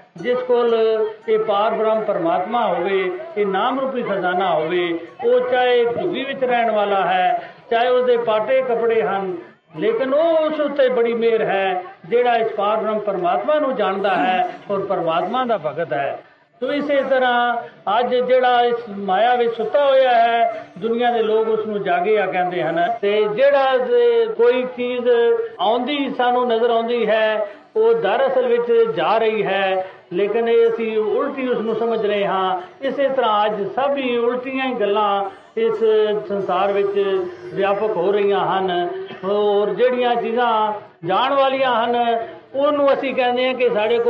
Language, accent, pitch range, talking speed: Hindi, native, 210-265 Hz, 95 wpm